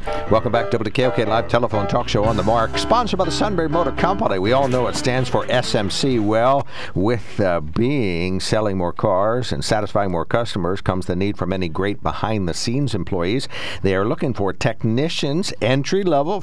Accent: American